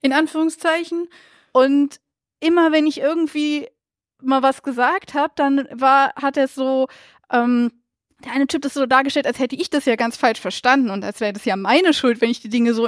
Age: 20-39